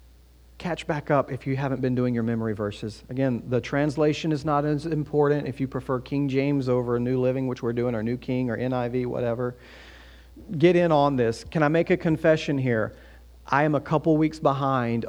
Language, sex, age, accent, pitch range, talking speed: English, male, 40-59, American, 115-155 Hz, 205 wpm